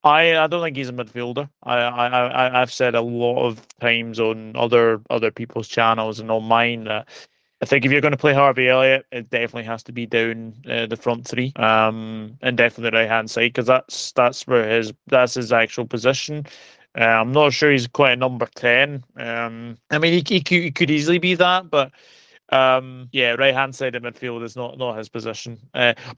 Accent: British